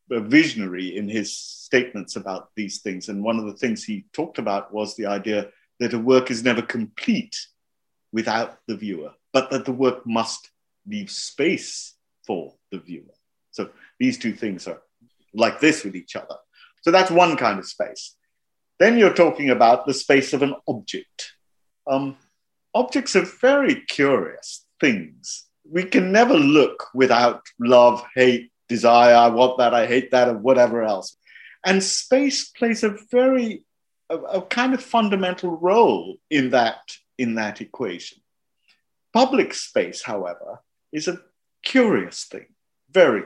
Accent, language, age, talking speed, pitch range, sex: British, English, 50-69, 150 wpm, 120-195 Hz, male